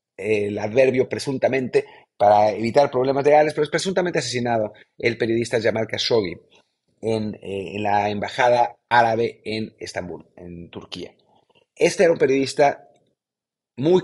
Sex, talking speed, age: male, 130 wpm, 40-59